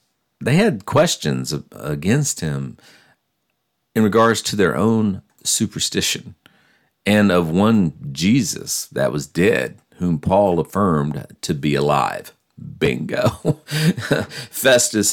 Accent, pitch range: American, 70-90 Hz